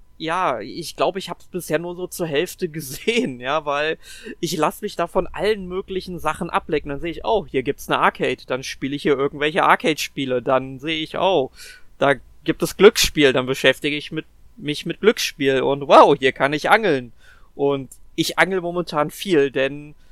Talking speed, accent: 195 wpm, German